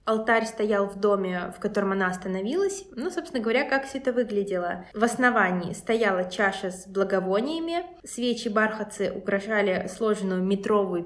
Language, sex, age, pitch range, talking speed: Russian, female, 20-39, 195-235 Hz, 135 wpm